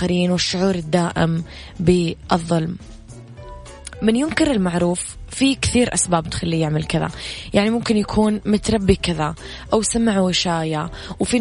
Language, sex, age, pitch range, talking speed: English, female, 20-39, 170-205 Hz, 110 wpm